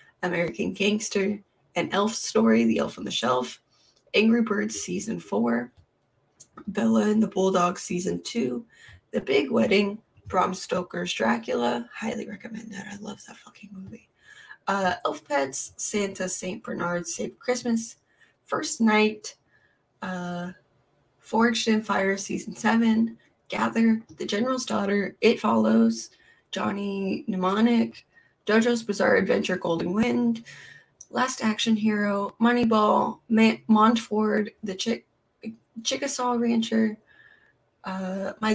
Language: English